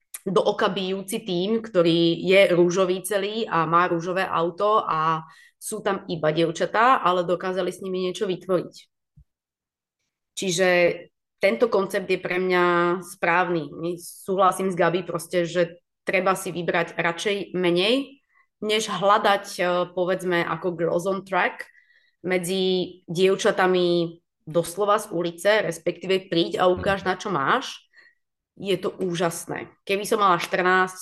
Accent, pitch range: native, 170-190 Hz